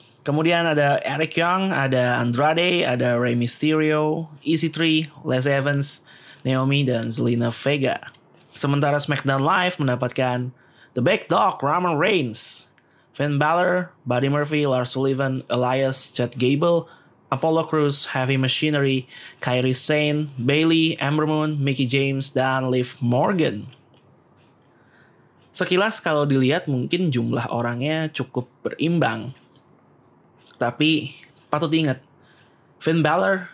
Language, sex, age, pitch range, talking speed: Indonesian, male, 20-39, 125-155 Hz, 110 wpm